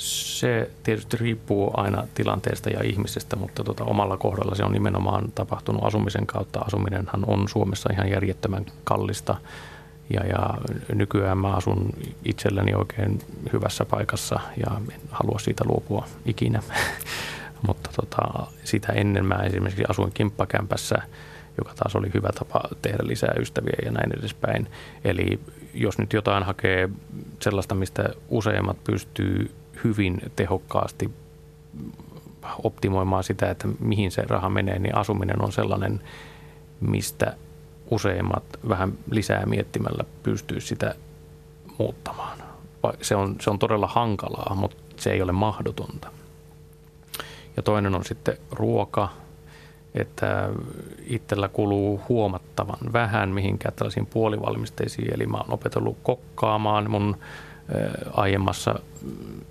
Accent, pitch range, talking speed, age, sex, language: native, 100-110 Hz, 120 wpm, 30-49, male, Finnish